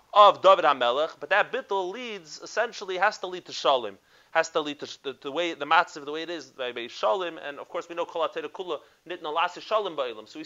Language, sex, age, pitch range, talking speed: English, male, 30-49, 145-190 Hz, 200 wpm